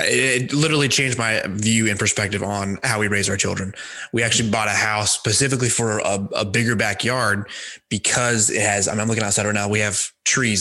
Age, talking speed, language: 20-39, 210 wpm, English